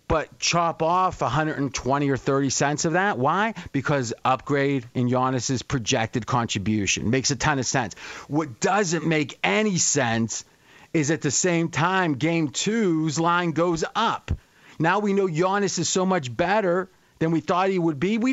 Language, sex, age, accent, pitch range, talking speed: English, male, 40-59, American, 150-185 Hz, 165 wpm